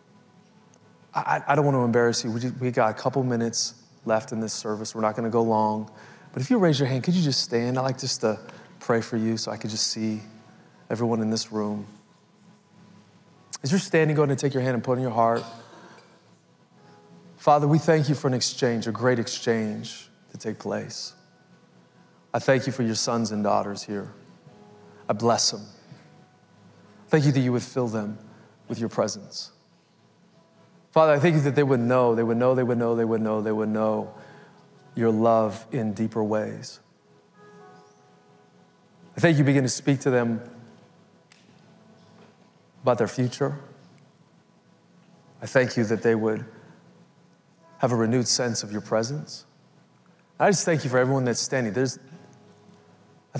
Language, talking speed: English, 180 wpm